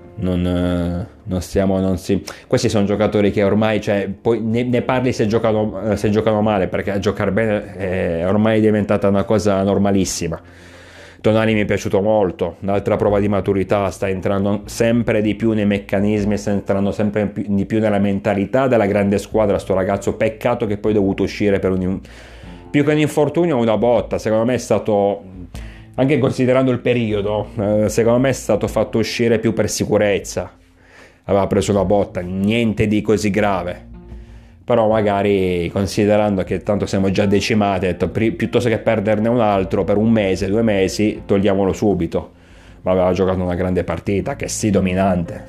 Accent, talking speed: native, 165 wpm